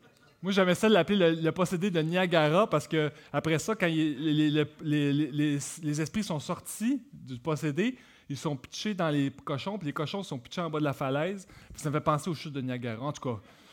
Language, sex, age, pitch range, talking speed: French, male, 30-49, 135-195 Hz, 230 wpm